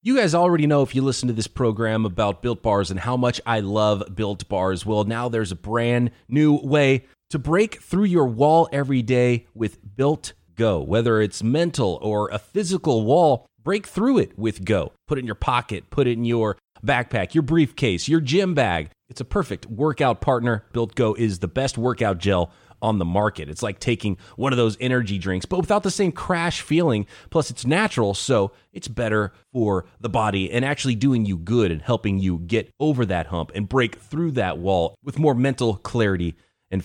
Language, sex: English, male